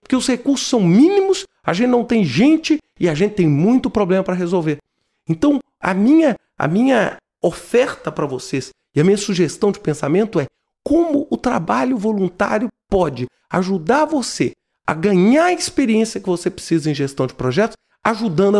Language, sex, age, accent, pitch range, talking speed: Portuguese, male, 40-59, Brazilian, 175-245 Hz, 160 wpm